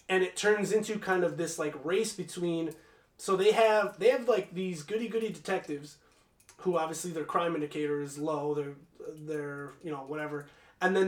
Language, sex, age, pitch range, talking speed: English, male, 30-49, 155-200 Hz, 180 wpm